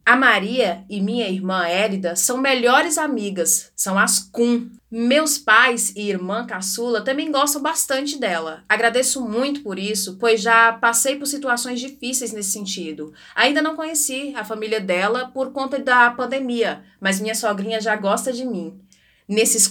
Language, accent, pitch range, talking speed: Portuguese, Brazilian, 190-250 Hz, 155 wpm